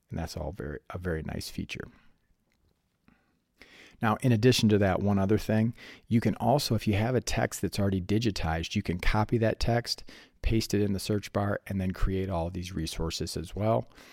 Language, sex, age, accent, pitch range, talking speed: English, male, 40-59, American, 90-110 Hz, 195 wpm